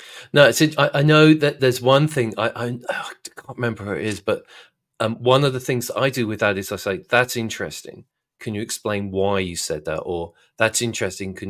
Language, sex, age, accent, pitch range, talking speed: English, male, 40-59, British, 105-130 Hz, 215 wpm